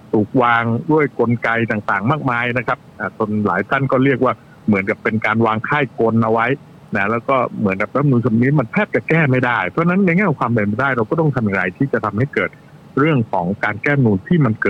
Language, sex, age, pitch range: Thai, male, 60-79, 105-140 Hz